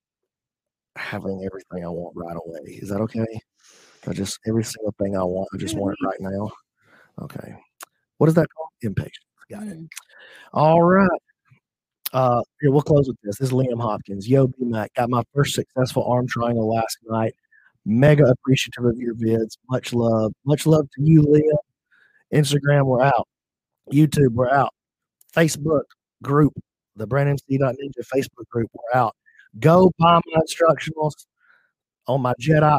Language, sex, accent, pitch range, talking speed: English, male, American, 115-155 Hz, 155 wpm